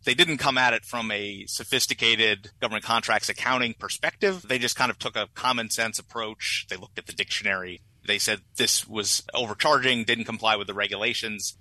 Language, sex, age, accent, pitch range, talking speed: English, male, 30-49, American, 105-125 Hz, 185 wpm